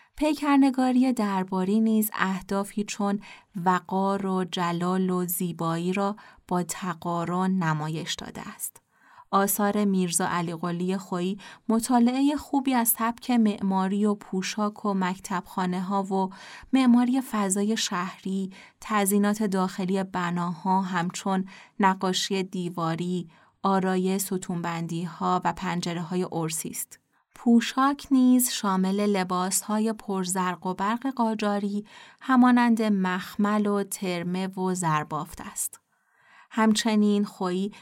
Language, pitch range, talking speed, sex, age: Persian, 185-220 Hz, 100 wpm, female, 30-49